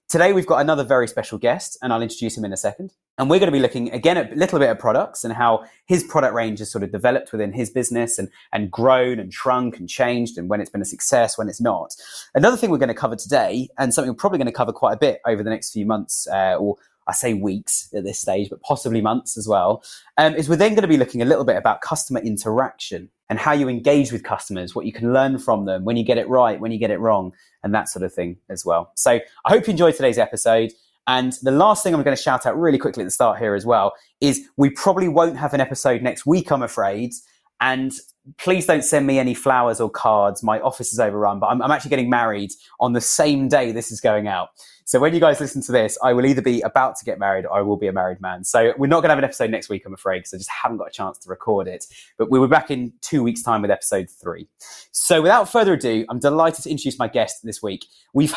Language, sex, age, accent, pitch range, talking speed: English, male, 30-49, British, 110-140 Hz, 270 wpm